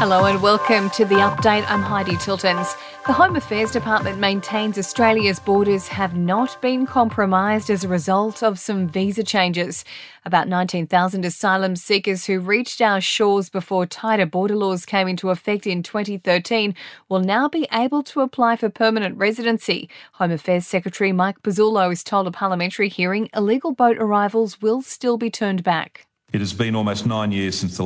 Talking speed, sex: 170 wpm, female